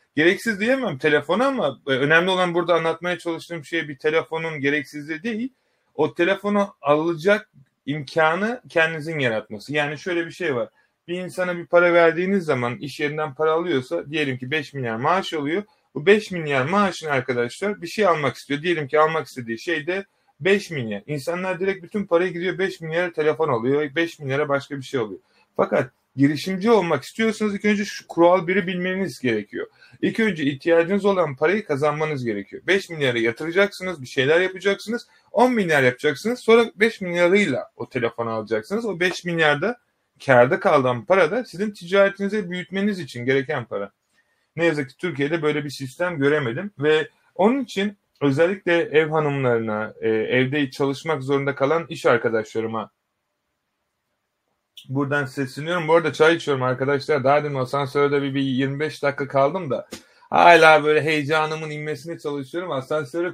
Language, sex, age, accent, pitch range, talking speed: Turkish, male, 30-49, native, 140-180 Hz, 150 wpm